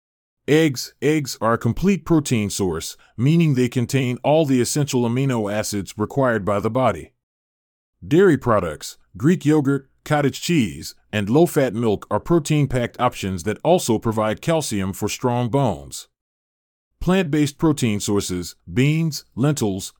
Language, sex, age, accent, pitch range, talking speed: English, male, 30-49, American, 100-150 Hz, 130 wpm